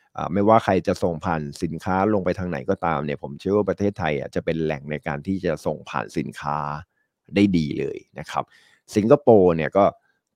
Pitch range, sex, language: 80-100 Hz, male, Thai